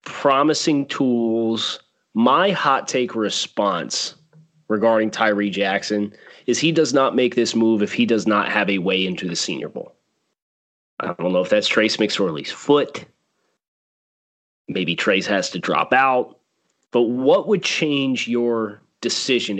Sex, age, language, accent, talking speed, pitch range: male, 30-49, English, American, 145 wpm, 105-125 Hz